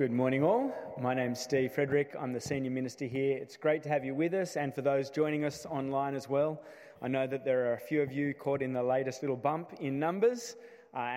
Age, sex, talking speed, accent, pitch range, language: 20-39, male, 240 wpm, Australian, 125-150 Hz, English